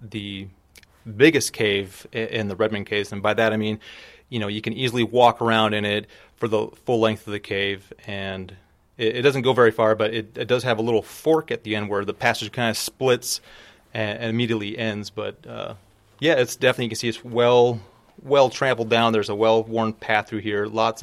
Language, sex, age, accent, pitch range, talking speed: English, male, 30-49, American, 100-115 Hz, 210 wpm